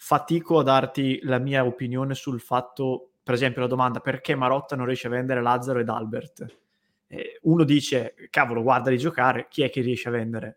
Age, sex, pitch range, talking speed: 20-39, male, 125-150 Hz, 185 wpm